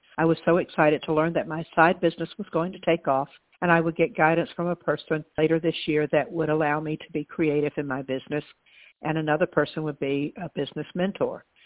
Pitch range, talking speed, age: 150-170 Hz, 225 wpm, 60-79